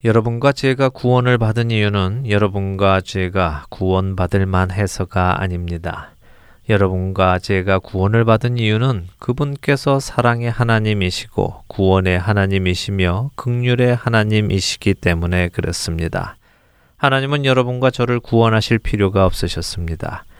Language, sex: Korean, male